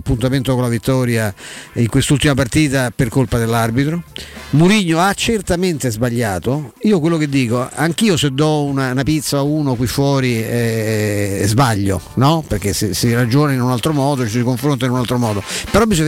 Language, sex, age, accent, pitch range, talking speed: Italian, male, 50-69, native, 125-165 Hz, 185 wpm